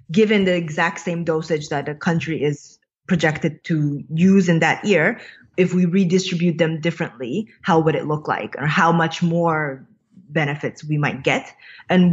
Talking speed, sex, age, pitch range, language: 170 wpm, female, 20-39, 155-190 Hz, English